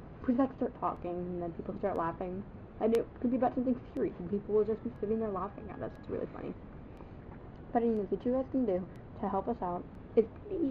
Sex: female